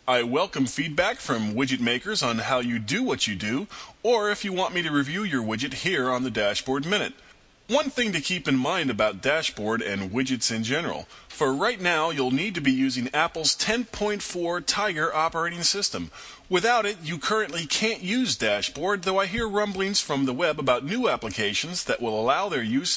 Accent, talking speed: American, 195 wpm